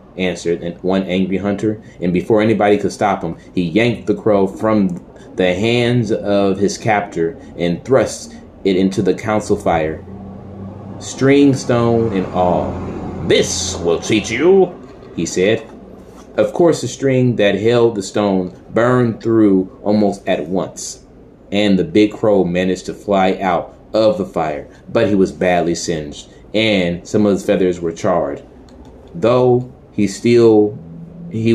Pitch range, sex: 95-115 Hz, male